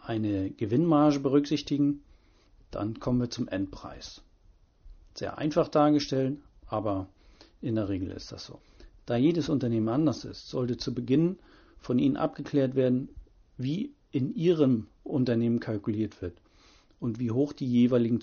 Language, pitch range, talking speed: German, 100-140 Hz, 135 wpm